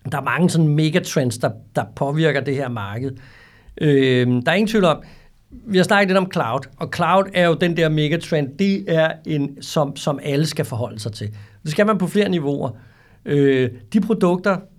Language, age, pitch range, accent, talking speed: Danish, 60-79, 130-180 Hz, native, 200 wpm